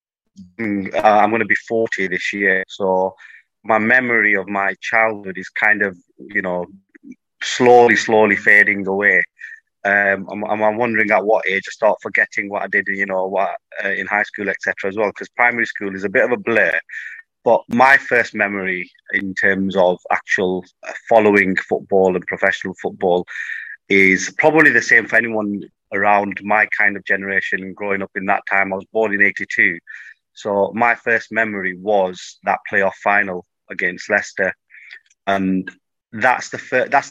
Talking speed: 170 wpm